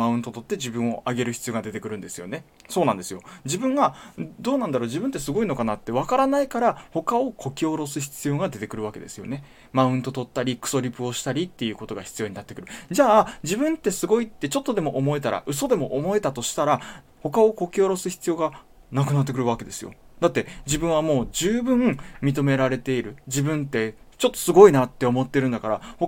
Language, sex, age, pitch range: Japanese, male, 20-39, 120-185 Hz